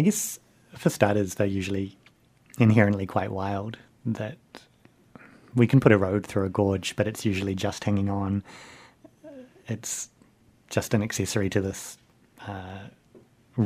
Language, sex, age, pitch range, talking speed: English, male, 30-49, 95-115 Hz, 135 wpm